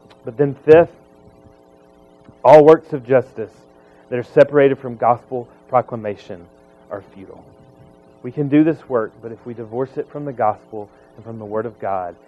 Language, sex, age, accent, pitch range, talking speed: English, male, 30-49, American, 105-165 Hz, 165 wpm